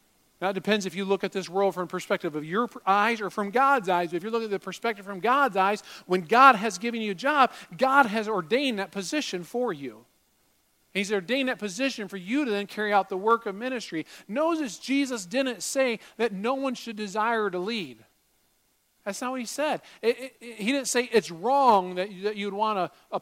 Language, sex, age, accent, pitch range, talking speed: English, male, 40-59, American, 180-235 Hz, 215 wpm